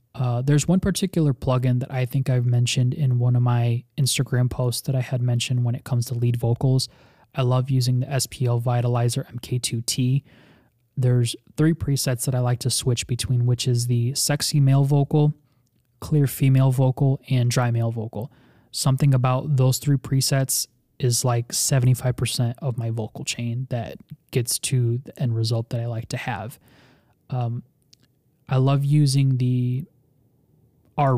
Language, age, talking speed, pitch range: English, 20-39, 160 wpm, 120-135 Hz